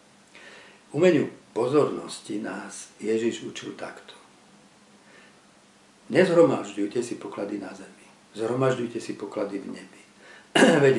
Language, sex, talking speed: Slovak, male, 95 wpm